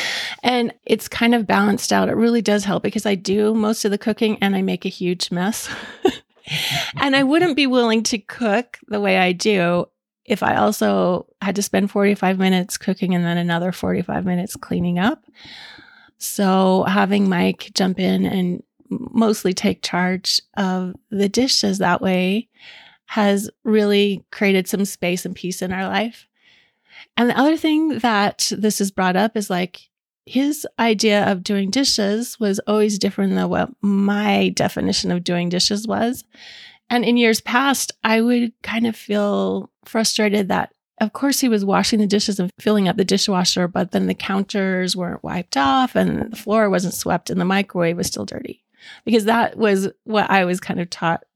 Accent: American